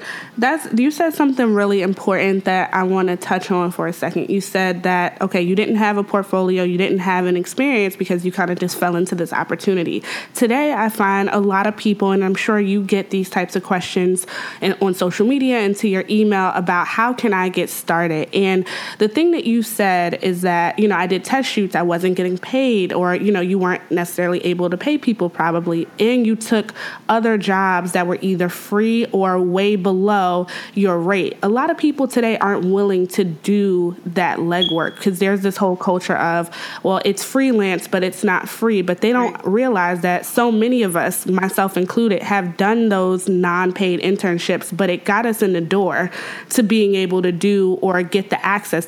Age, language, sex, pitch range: 20-39, English, female, 180-215 Hz